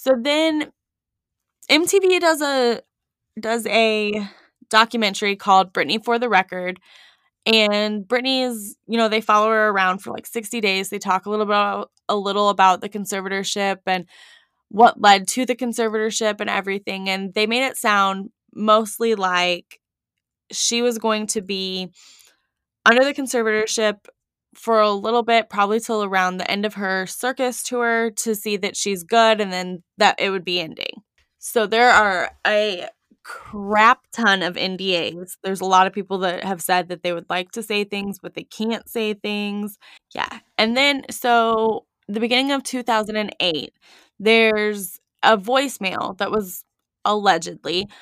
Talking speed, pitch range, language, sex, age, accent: 155 wpm, 195-230 Hz, English, female, 10-29, American